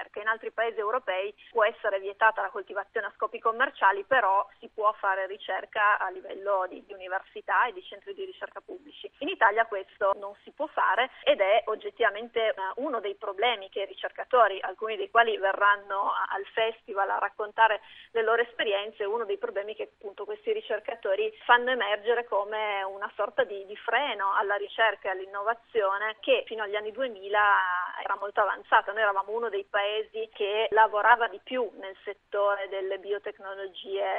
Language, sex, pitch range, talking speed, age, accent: Italian, female, 200-245 Hz, 170 wpm, 30-49, native